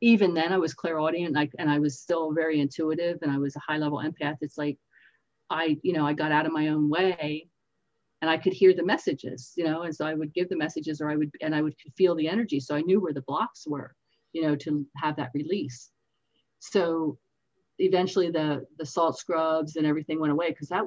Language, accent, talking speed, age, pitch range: English, American, 225 wpm, 50-69, 145-170 Hz